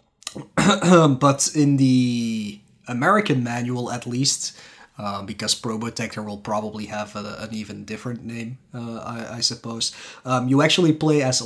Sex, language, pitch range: male, English, 110-145 Hz